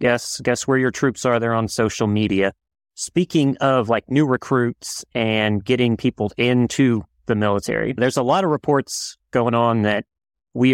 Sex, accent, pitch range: male, American, 110-135 Hz